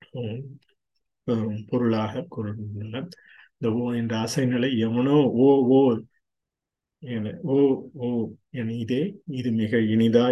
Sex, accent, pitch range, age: male, native, 110-130 Hz, 50-69